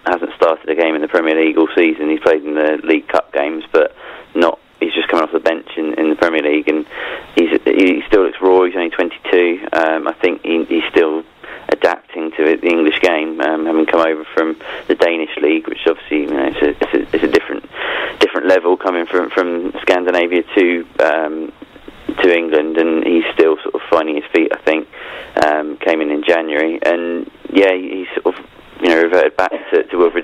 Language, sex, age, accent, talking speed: English, male, 20-39, British, 215 wpm